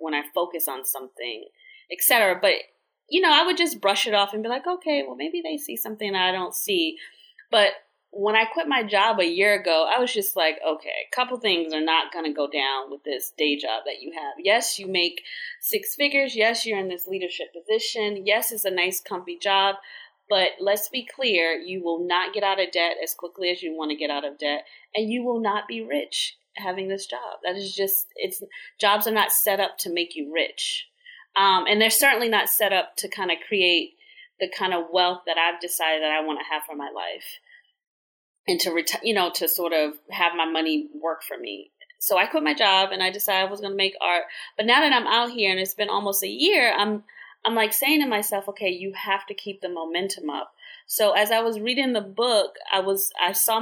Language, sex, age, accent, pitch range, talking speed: English, female, 30-49, American, 175-250 Hz, 230 wpm